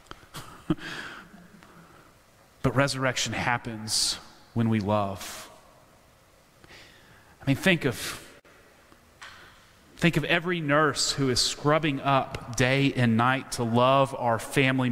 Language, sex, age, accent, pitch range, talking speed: English, male, 30-49, American, 120-160 Hz, 100 wpm